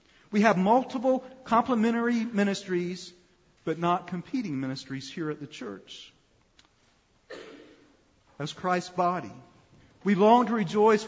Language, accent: English, American